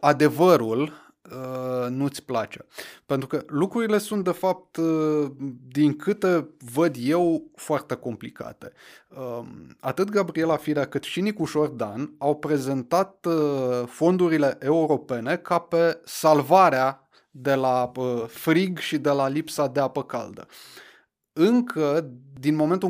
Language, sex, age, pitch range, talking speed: Romanian, male, 20-39, 135-175 Hz, 110 wpm